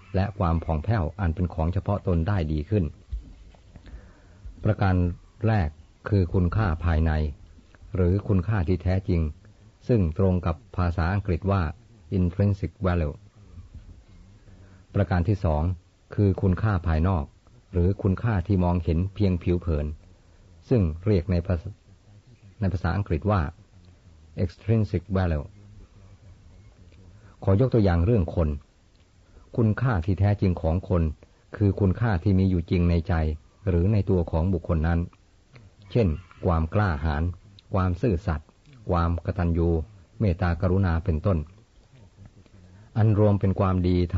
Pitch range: 85-100 Hz